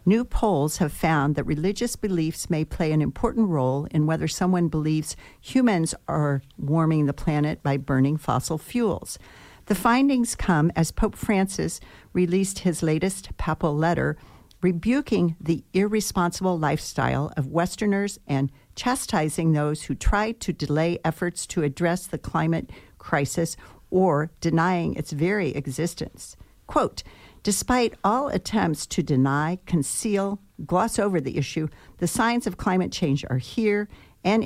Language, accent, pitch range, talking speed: English, American, 155-200 Hz, 140 wpm